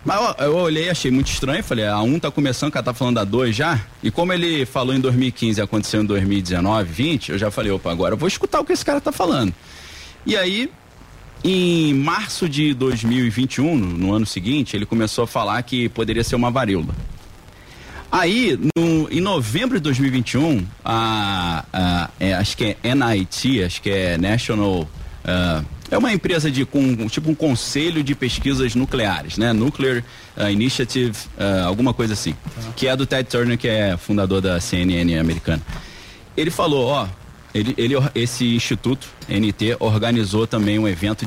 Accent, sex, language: Brazilian, male, English